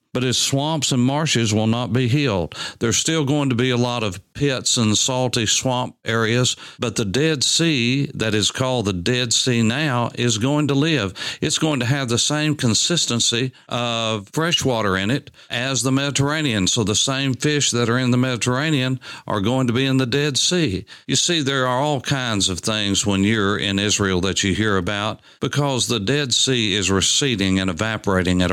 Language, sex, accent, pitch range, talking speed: English, male, American, 100-130 Hz, 200 wpm